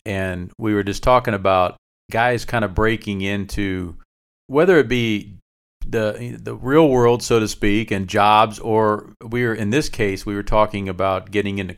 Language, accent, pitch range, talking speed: English, American, 100-125 Hz, 180 wpm